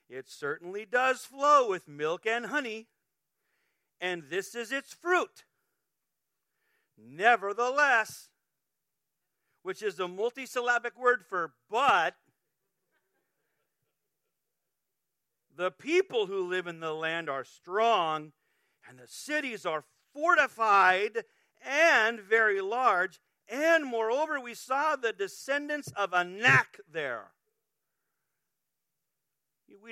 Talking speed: 95 wpm